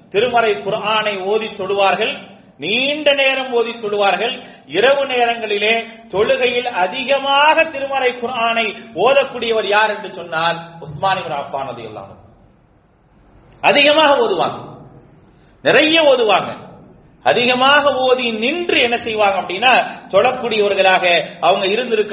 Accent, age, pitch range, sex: Indian, 40-59, 200-275 Hz, male